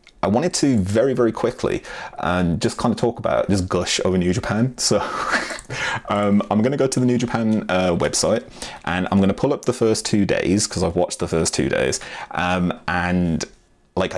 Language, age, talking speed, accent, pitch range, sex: English, 30-49, 205 wpm, British, 90-115 Hz, male